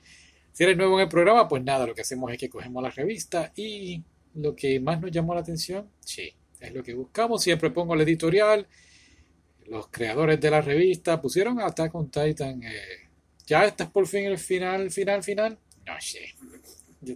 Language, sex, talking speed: Spanish, male, 190 wpm